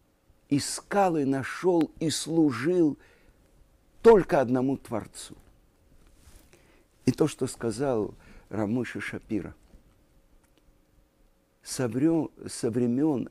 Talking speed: 70 wpm